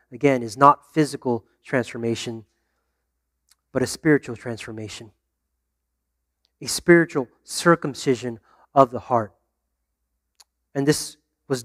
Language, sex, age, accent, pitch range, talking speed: English, male, 30-49, American, 120-165 Hz, 95 wpm